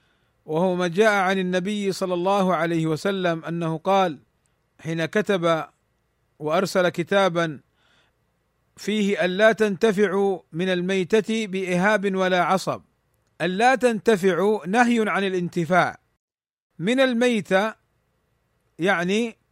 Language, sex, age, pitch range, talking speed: Arabic, male, 50-69, 175-215 Hz, 95 wpm